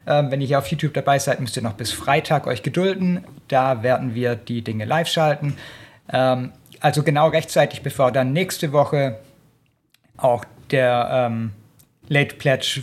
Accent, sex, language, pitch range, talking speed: German, male, German, 125-160 Hz, 160 wpm